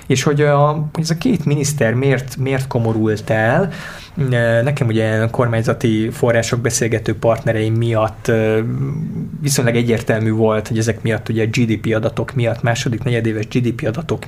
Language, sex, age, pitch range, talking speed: Hungarian, male, 20-39, 115-130 Hz, 145 wpm